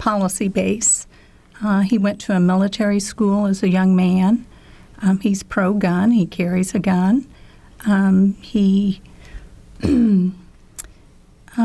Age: 50-69